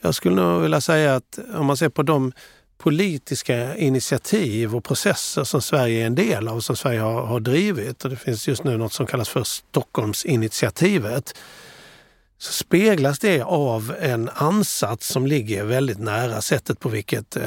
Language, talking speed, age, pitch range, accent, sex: Swedish, 170 wpm, 50-69, 120-150 Hz, native, male